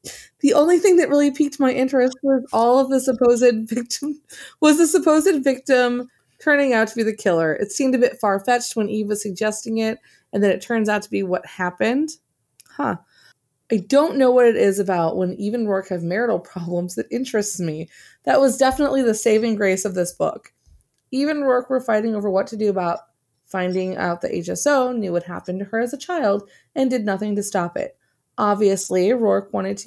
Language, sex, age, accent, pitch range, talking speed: English, female, 20-39, American, 185-245 Hz, 205 wpm